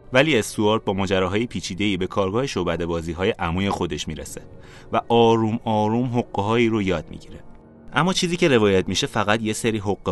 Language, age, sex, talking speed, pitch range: Persian, 30-49, male, 165 wpm, 85-115 Hz